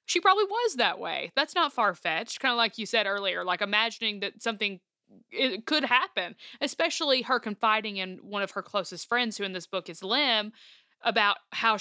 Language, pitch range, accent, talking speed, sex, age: English, 185-230 Hz, American, 190 wpm, female, 20-39